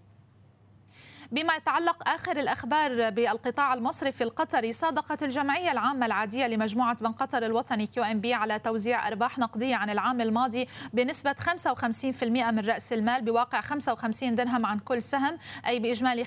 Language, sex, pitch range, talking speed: Arabic, female, 225-255 Hz, 135 wpm